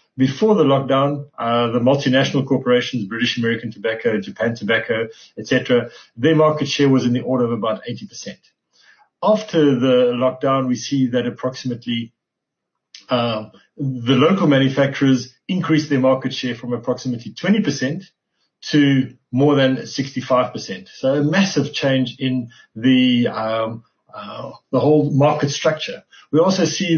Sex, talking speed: male, 135 wpm